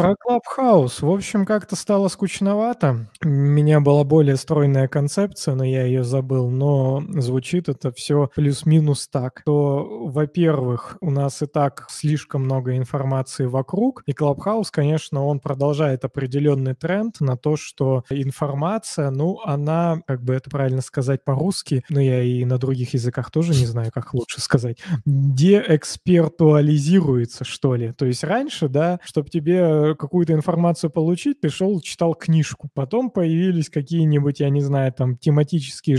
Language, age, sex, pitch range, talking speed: Russian, 20-39, male, 135-170 Hz, 145 wpm